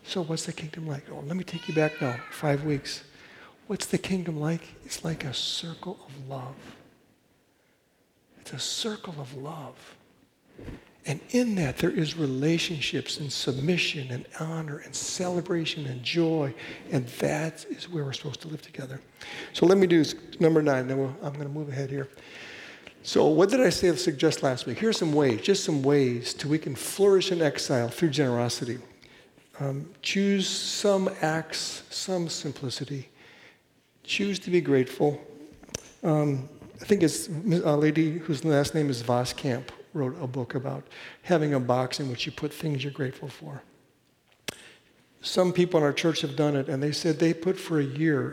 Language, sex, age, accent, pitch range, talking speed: English, male, 60-79, American, 135-165 Hz, 175 wpm